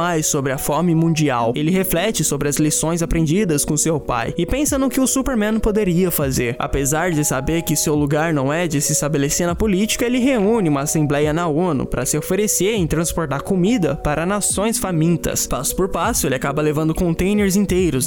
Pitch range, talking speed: 150-200 Hz, 195 wpm